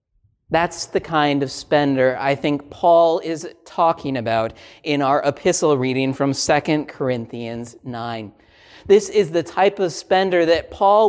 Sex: male